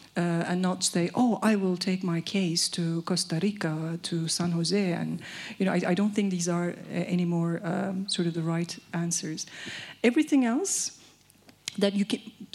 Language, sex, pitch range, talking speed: English, female, 180-215 Hz, 185 wpm